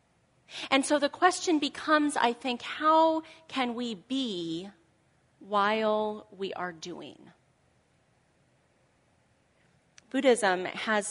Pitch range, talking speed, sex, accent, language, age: 180-240 Hz, 90 wpm, female, American, English, 30-49